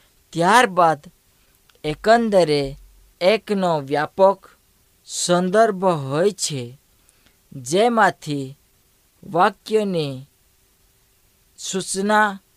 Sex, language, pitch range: female, Hindi, 145-195 Hz